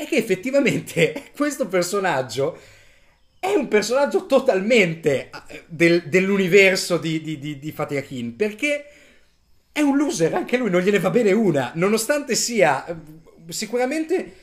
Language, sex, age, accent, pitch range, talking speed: Italian, male, 30-49, native, 150-200 Hz, 130 wpm